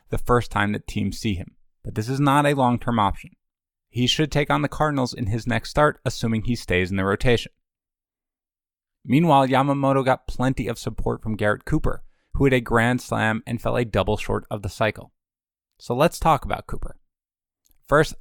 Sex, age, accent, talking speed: male, 20-39, American, 190 wpm